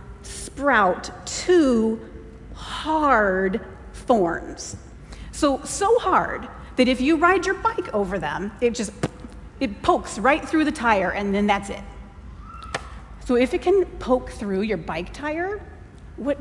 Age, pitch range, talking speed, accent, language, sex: 40-59, 200-295 Hz, 135 wpm, American, English, female